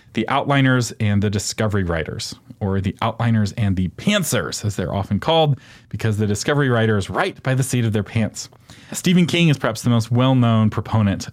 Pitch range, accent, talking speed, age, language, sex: 105-130 Hz, American, 185 wpm, 40-59, English, male